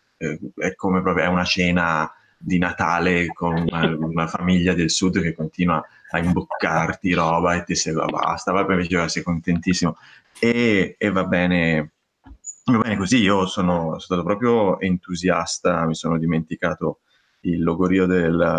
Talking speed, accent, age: 140 wpm, native, 20-39